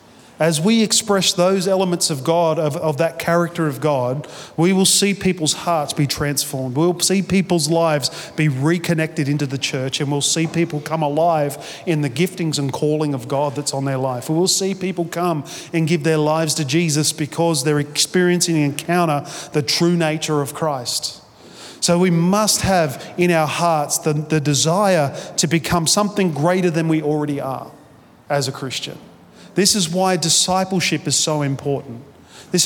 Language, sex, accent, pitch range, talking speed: English, male, Australian, 150-180 Hz, 175 wpm